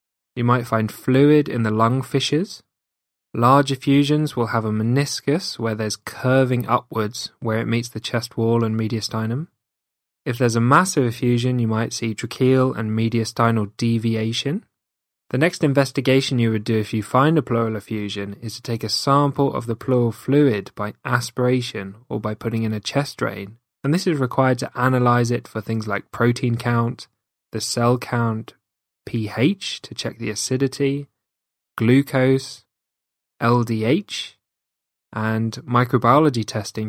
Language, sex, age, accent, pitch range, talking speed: English, male, 20-39, British, 110-130 Hz, 150 wpm